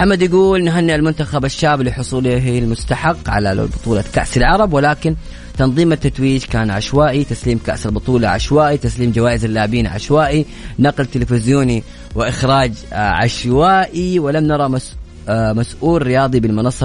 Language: Arabic